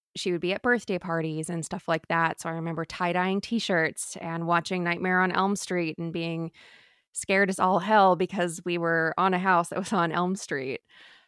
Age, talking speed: 20-39, 205 wpm